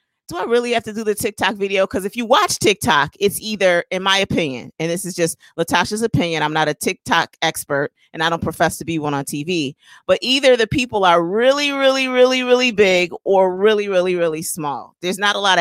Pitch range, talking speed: 160-215 Hz, 225 wpm